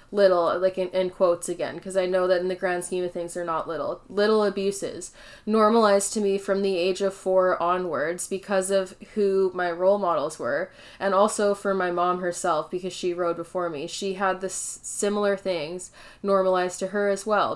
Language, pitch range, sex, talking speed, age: English, 170-195 Hz, female, 200 wpm, 10-29